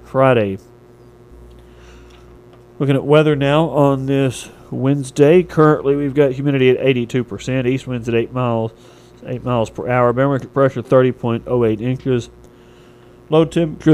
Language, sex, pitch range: English, male, 115-140 Hz